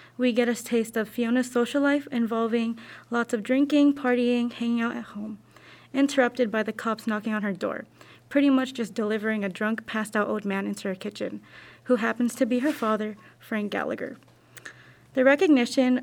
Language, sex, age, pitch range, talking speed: English, female, 20-39, 225-255 Hz, 180 wpm